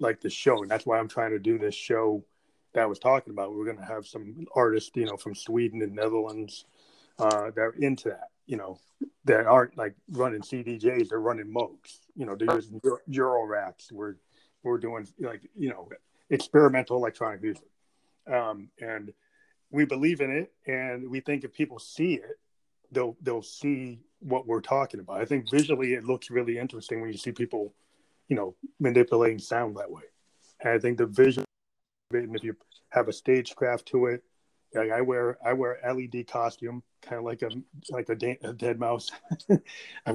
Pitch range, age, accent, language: 115-135 Hz, 30-49, American, English